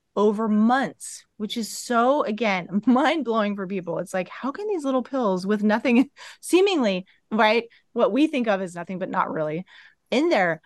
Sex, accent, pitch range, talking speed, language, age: female, American, 190-250 Hz, 175 wpm, English, 30-49